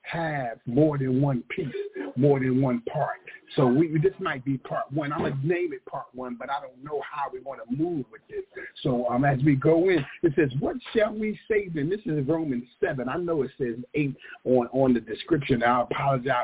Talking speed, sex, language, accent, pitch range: 225 wpm, male, English, American, 140-210 Hz